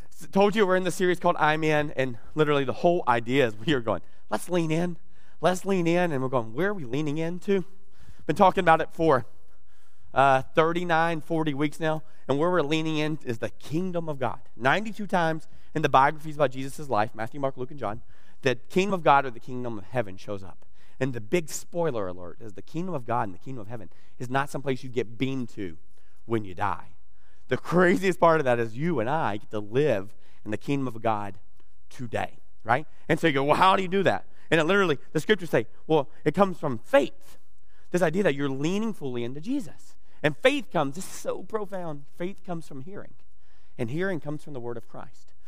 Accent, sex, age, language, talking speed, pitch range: American, male, 30-49, English, 225 wpm, 115-165 Hz